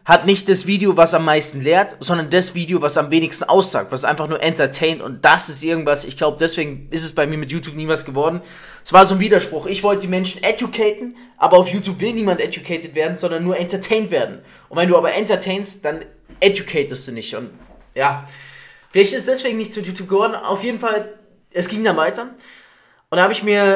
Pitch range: 155-195 Hz